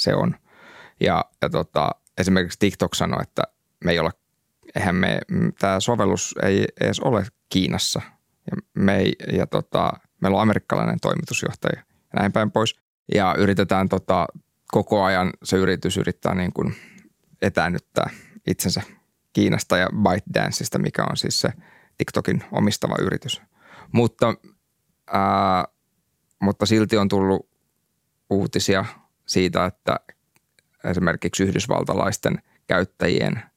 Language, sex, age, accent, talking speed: Finnish, male, 20-39, native, 120 wpm